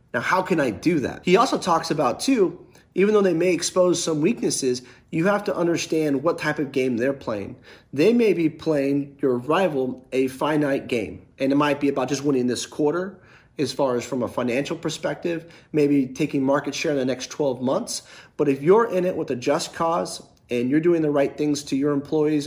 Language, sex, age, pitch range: English, male, 30-49, 135-160 Hz